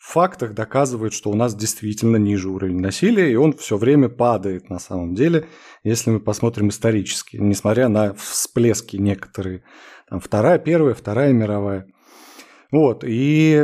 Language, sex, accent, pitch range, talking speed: Russian, male, native, 110-160 Hz, 140 wpm